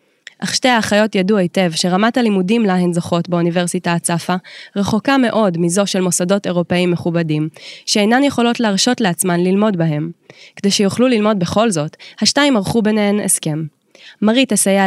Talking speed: 140 wpm